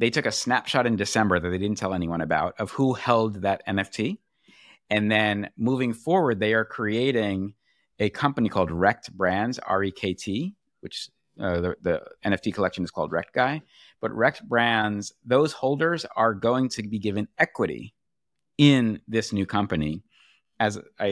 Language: English